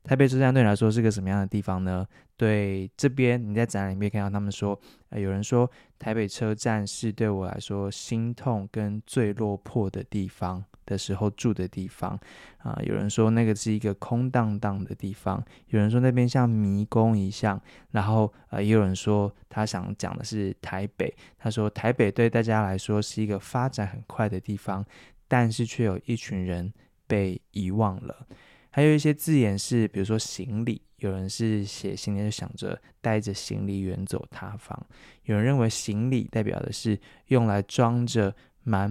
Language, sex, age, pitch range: Chinese, male, 20-39, 100-120 Hz